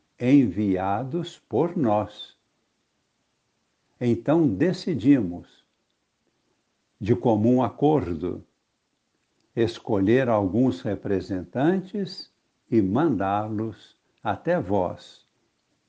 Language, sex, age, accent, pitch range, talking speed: Portuguese, male, 60-79, Brazilian, 105-150 Hz, 55 wpm